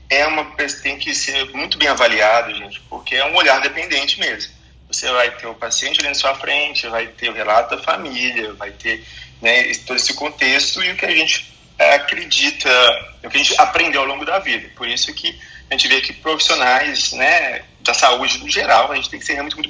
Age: 20-39